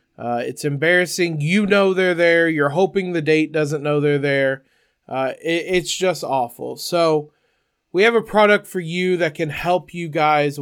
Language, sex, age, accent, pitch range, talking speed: English, male, 20-39, American, 150-185 Hz, 180 wpm